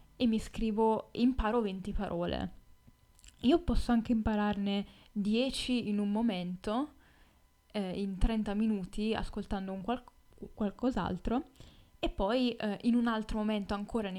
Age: 10-29